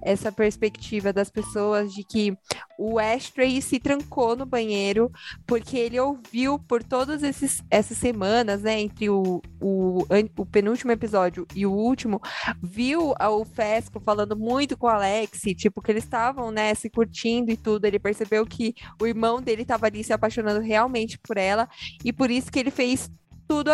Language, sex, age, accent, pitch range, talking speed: Portuguese, female, 20-39, Brazilian, 205-240 Hz, 165 wpm